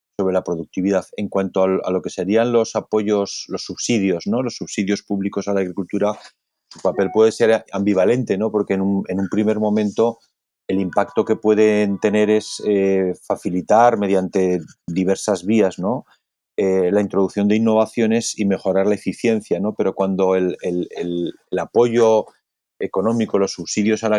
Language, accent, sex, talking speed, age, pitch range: English, Spanish, male, 165 wpm, 30-49, 95-110 Hz